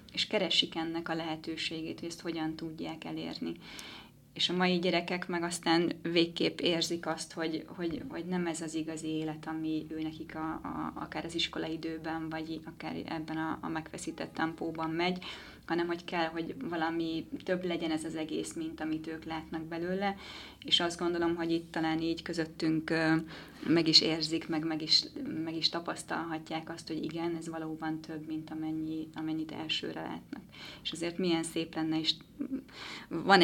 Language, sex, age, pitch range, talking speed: Hungarian, female, 20-39, 160-170 Hz, 165 wpm